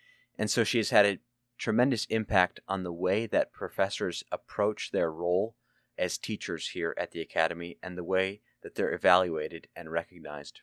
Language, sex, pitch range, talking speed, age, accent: English, male, 90-115 Hz, 170 wpm, 30-49, American